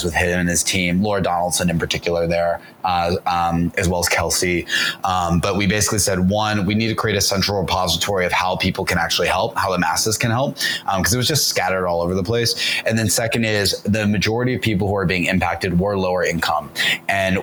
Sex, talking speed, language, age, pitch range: male, 225 wpm, English, 20-39, 90-105 Hz